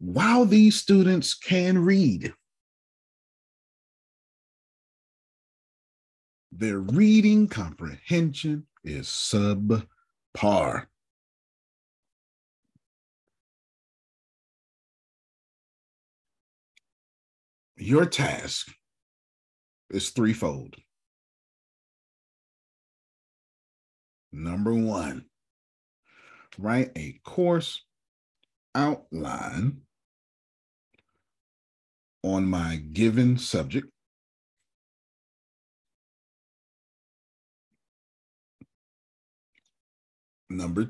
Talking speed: 35 wpm